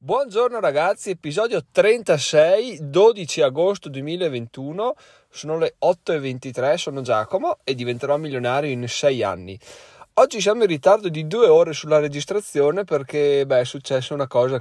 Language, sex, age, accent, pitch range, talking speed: Italian, male, 20-39, native, 115-140 Hz, 135 wpm